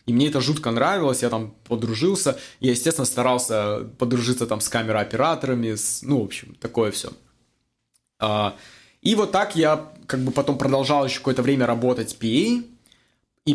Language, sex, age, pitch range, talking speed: Russian, male, 20-39, 115-135 Hz, 150 wpm